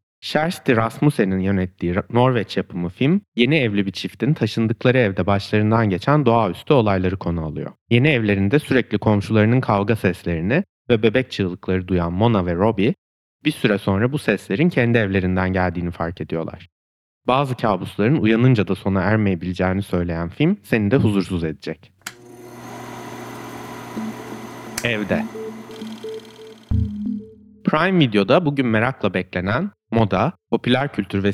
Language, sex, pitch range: Turkish, male, 95-130 Hz